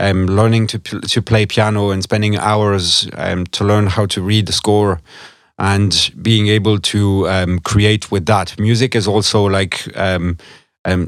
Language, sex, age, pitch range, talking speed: English, male, 40-59, 95-110 Hz, 170 wpm